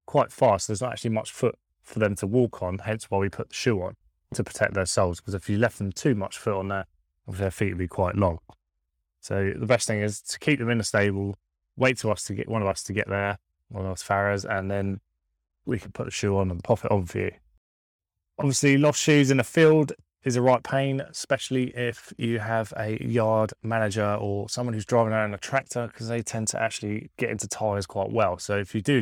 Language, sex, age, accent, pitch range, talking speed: English, male, 20-39, British, 100-120 Hz, 245 wpm